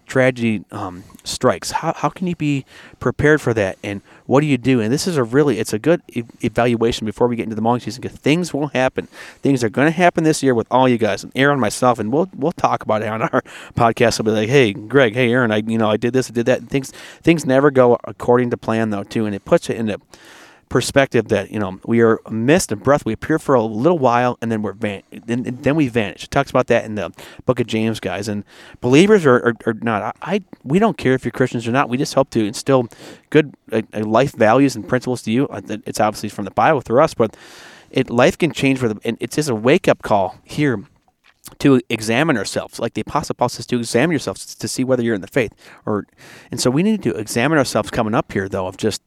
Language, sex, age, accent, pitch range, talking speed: English, male, 30-49, American, 110-135 Hz, 255 wpm